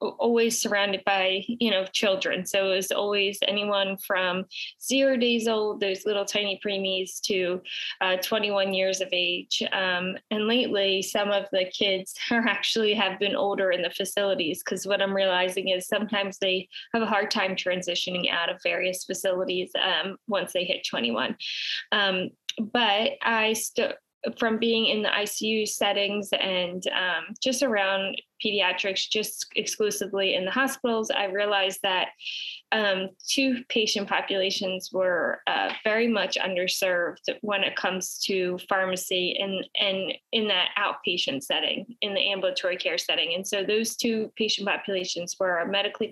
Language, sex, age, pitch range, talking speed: English, female, 20-39, 185-220 Hz, 155 wpm